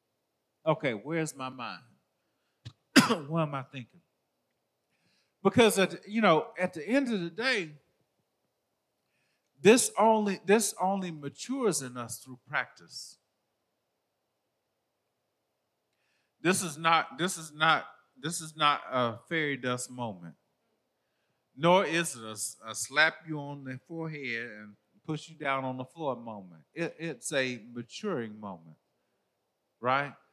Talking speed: 130 wpm